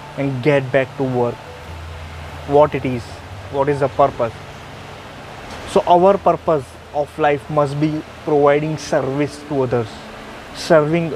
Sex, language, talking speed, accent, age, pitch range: male, English, 130 wpm, Indian, 20-39, 130-155 Hz